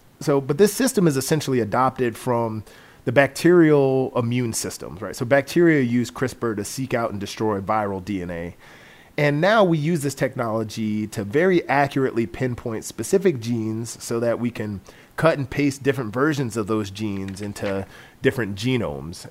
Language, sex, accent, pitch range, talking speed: English, male, American, 110-145 Hz, 160 wpm